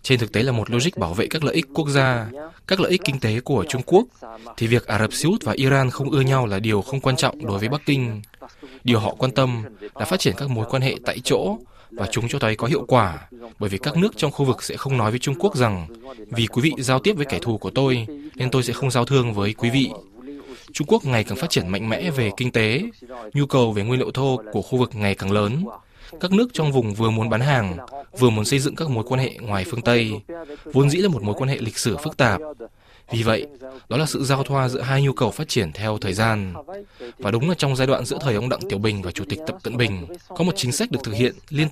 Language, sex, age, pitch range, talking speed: Vietnamese, male, 20-39, 110-145 Hz, 270 wpm